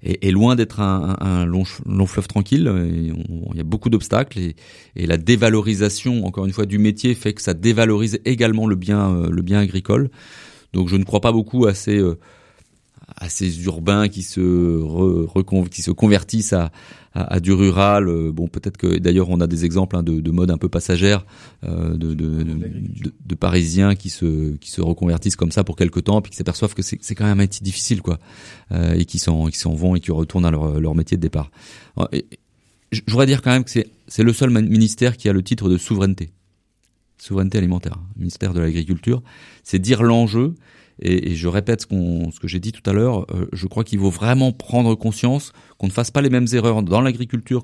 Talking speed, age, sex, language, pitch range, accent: 220 wpm, 30-49, male, French, 90-115 Hz, French